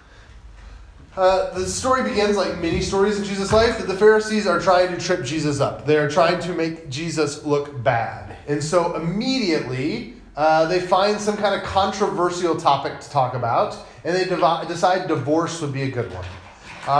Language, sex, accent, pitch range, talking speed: English, male, American, 145-190 Hz, 180 wpm